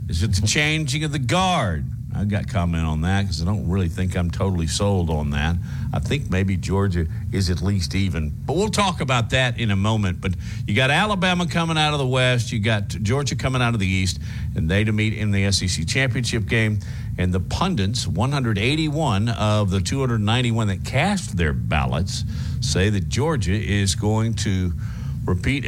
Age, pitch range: 50-69, 100-130 Hz